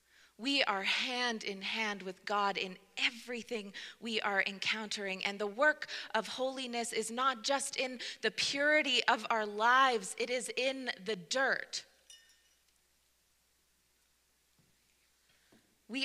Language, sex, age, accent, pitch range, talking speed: English, female, 30-49, American, 215-270 Hz, 120 wpm